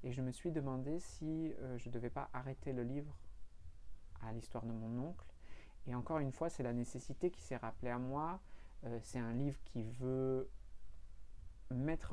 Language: French